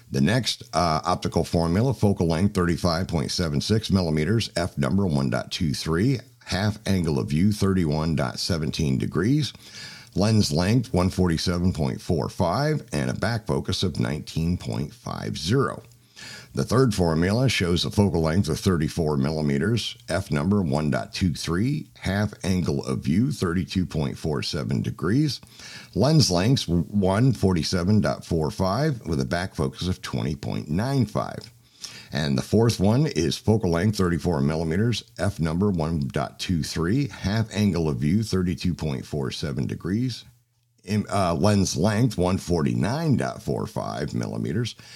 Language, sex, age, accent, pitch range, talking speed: English, male, 50-69, American, 75-110 Hz, 105 wpm